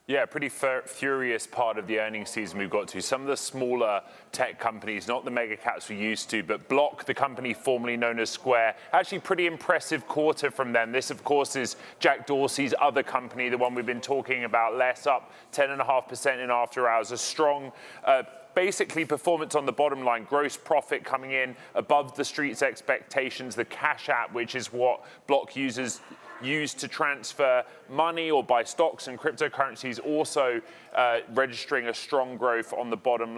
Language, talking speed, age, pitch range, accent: English, 180 wpm, 30-49, 120-145 Hz, British